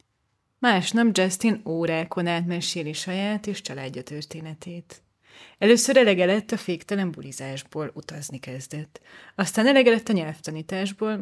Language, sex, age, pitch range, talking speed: Hungarian, female, 30-49, 160-210 Hz, 110 wpm